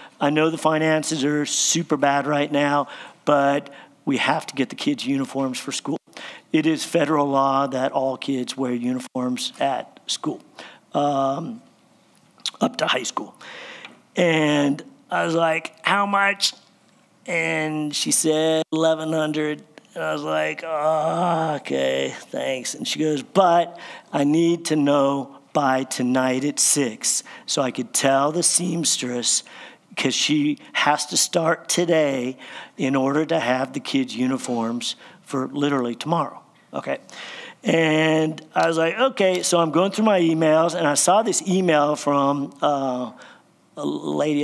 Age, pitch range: 50-69, 140-175 Hz